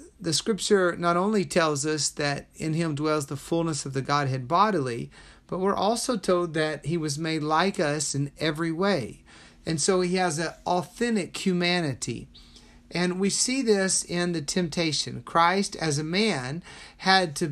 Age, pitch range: 40-59, 150-185 Hz